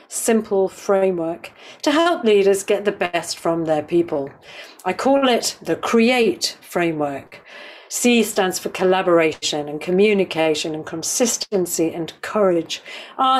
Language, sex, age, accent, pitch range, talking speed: English, female, 50-69, British, 180-230 Hz, 125 wpm